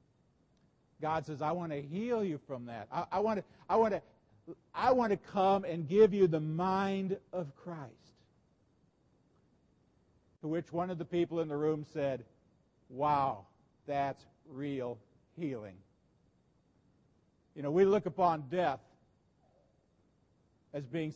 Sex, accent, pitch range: male, American, 145-195 Hz